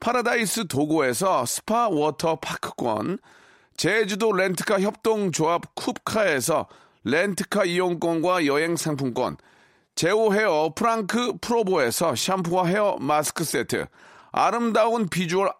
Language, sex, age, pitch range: Korean, male, 40-59, 160-210 Hz